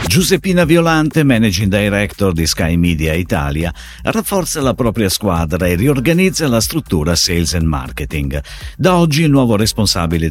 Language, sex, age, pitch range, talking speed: Italian, male, 50-69, 85-135 Hz, 140 wpm